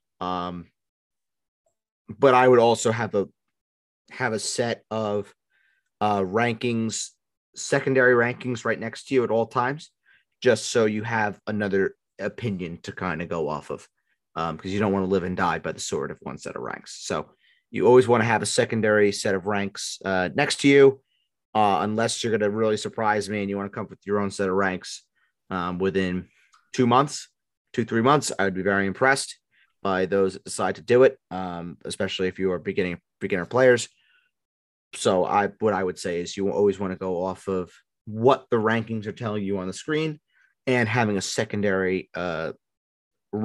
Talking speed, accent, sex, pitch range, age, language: 195 wpm, American, male, 95-115 Hz, 30-49, English